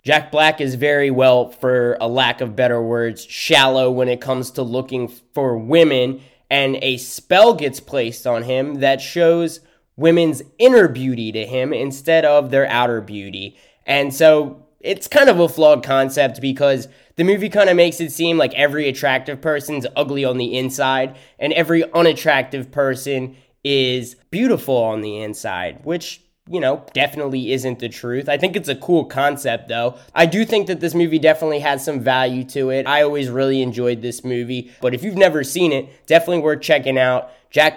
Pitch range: 130-160 Hz